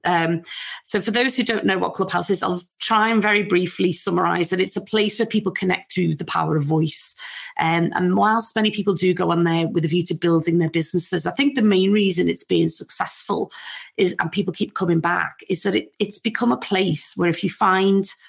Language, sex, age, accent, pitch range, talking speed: English, female, 30-49, British, 170-210 Hz, 225 wpm